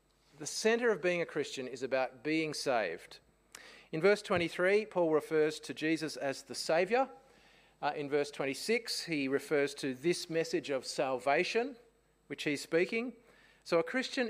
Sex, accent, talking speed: male, Australian, 155 wpm